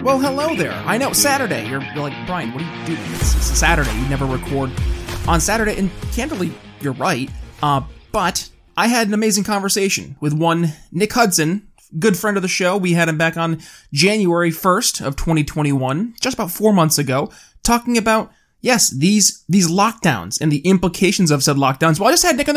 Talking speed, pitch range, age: 195 wpm, 150-200 Hz, 20-39